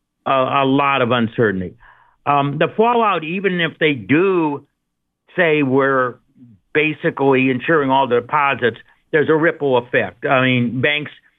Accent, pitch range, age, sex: American, 125-150 Hz, 60-79, male